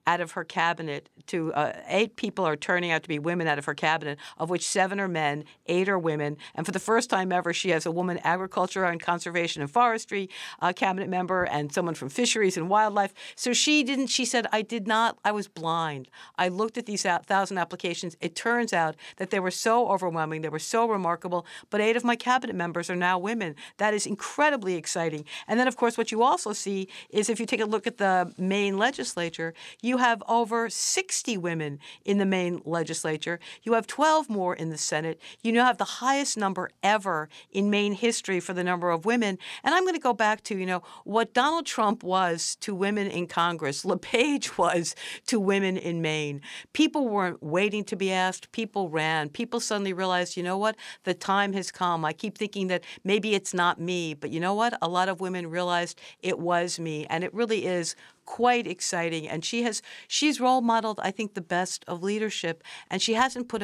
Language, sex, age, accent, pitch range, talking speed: English, female, 50-69, American, 170-225 Hz, 210 wpm